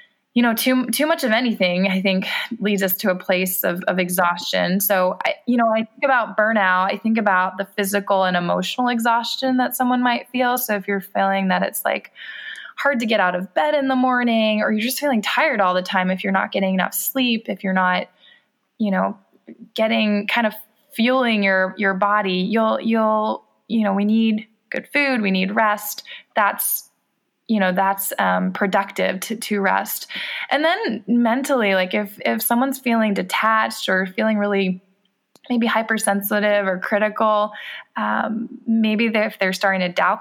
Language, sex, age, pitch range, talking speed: English, female, 20-39, 195-235 Hz, 180 wpm